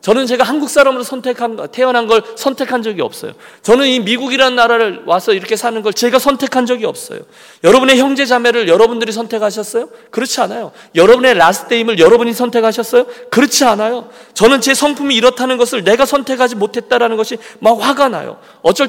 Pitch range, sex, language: 160-255 Hz, male, Korean